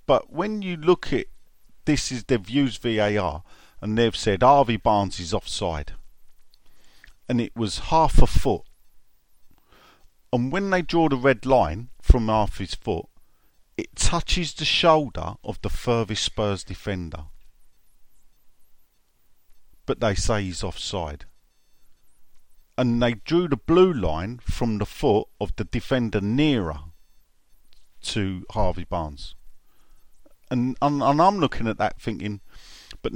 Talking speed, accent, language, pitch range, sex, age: 125 wpm, British, English, 95-135 Hz, male, 50-69